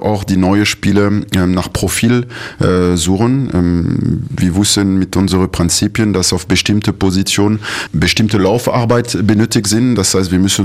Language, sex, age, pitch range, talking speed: German, male, 30-49, 95-105 Hz, 145 wpm